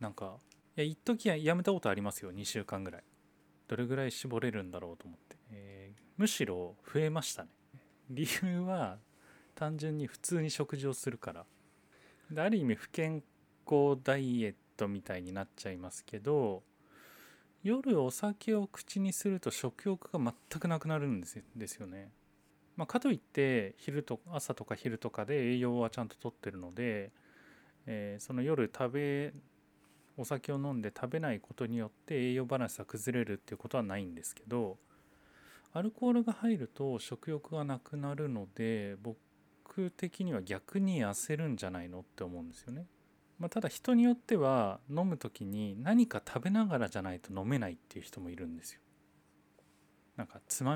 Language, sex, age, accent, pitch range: Japanese, male, 20-39, native, 100-155 Hz